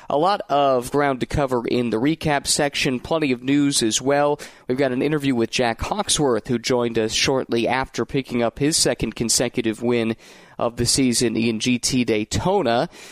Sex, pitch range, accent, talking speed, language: male, 120-150 Hz, American, 180 wpm, English